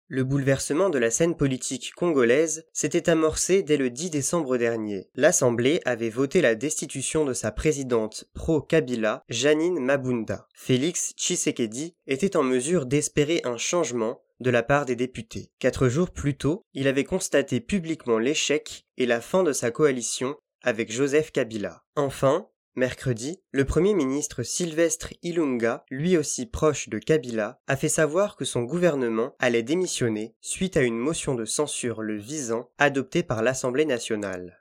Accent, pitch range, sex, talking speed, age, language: French, 120-160 Hz, male, 155 wpm, 20-39, French